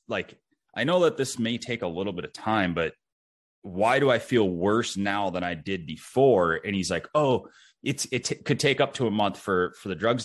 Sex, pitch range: male, 85-110 Hz